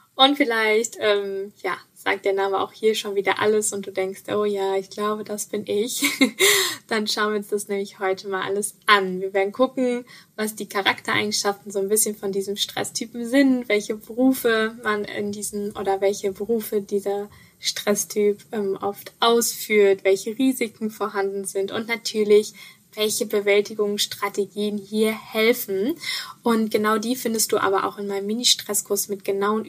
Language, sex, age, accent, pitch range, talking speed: German, female, 10-29, German, 200-225 Hz, 160 wpm